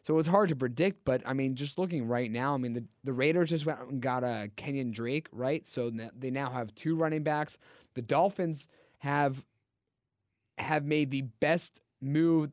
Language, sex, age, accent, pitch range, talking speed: English, male, 20-39, American, 120-150 Hz, 205 wpm